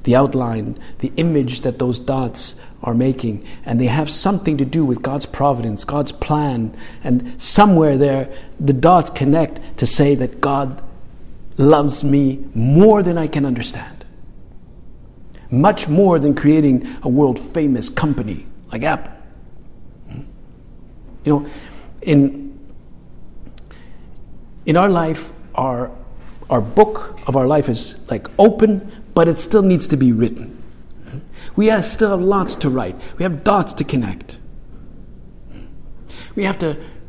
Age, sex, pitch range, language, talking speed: 50-69, male, 125-165 Hz, English, 135 wpm